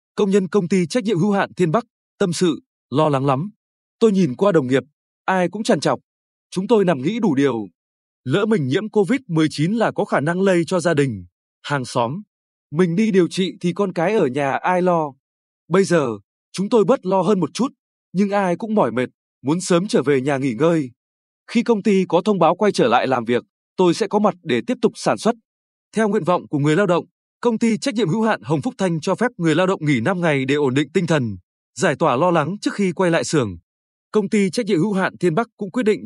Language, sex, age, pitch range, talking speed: Vietnamese, male, 20-39, 150-205 Hz, 240 wpm